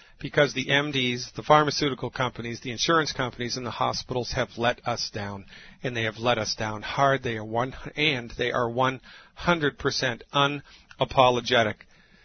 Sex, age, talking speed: male, 50-69, 150 wpm